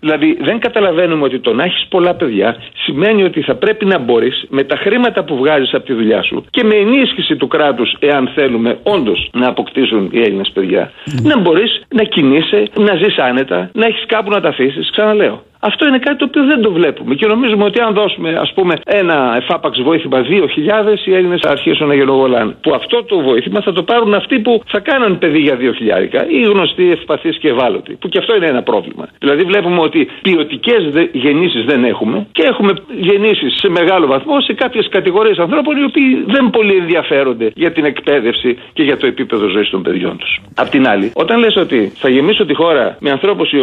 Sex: male